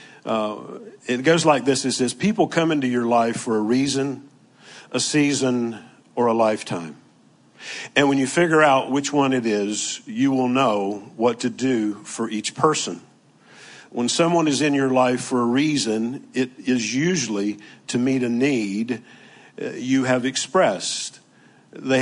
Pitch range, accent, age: 115-140 Hz, American, 50-69